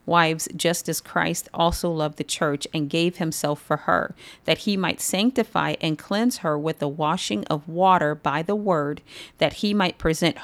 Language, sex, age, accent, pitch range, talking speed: English, female, 40-59, American, 155-185 Hz, 185 wpm